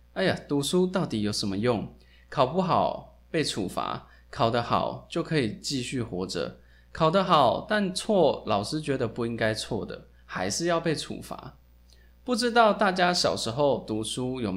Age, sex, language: 20-39, male, Chinese